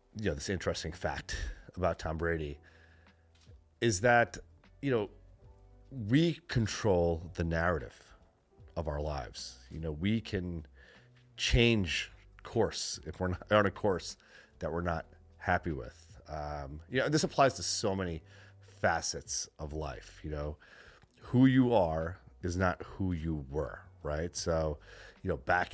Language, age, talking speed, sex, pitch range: English, 30-49, 145 wpm, male, 75-95 Hz